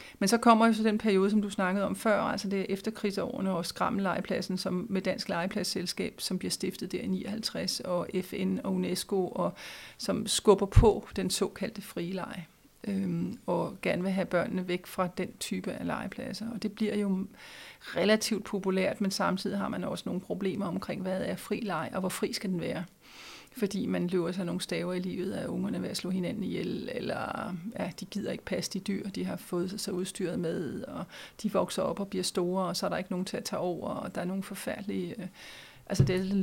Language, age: Danish, 40-59